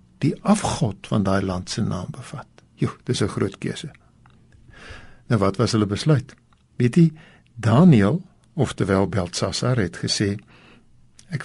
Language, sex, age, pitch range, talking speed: Dutch, male, 60-79, 105-145 Hz, 135 wpm